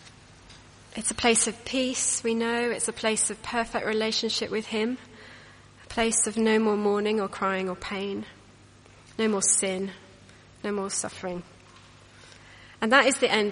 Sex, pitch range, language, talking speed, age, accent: female, 185-220 Hz, English, 160 wpm, 30-49, British